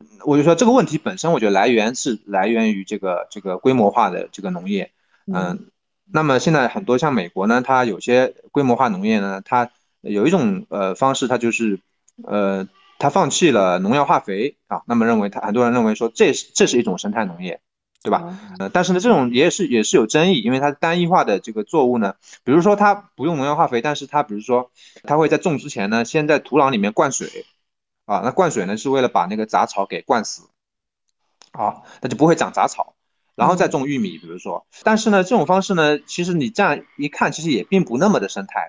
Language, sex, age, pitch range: Chinese, male, 20-39, 120-185 Hz